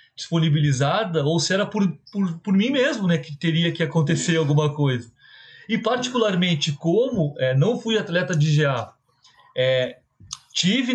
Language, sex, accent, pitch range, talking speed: Portuguese, male, Brazilian, 145-190 Hz, 150 wpm